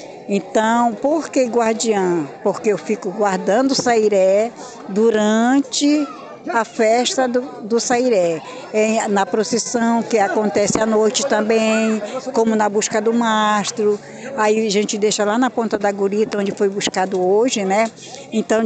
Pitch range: 195-235 Hz